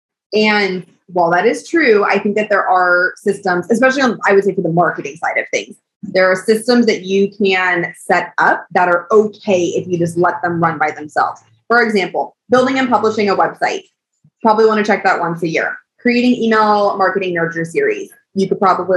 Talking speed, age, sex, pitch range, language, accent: 190 wpm, 20-39, female, 170-210 Hz, English, American